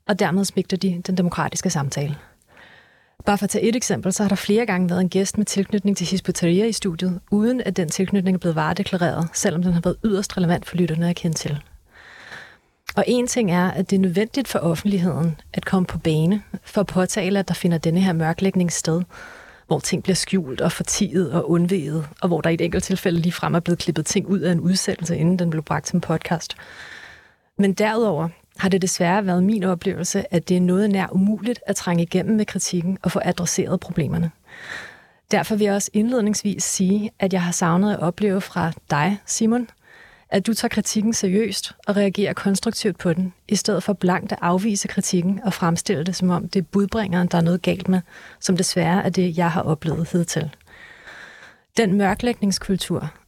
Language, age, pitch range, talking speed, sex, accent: Danish, 30-49, 175-200 Hz, 200 wpm, female, native